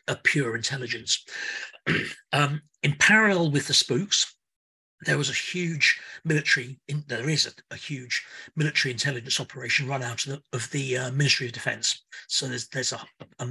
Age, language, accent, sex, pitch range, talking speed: 40-59, English, British, male, 130-155 Hz, 170 wpm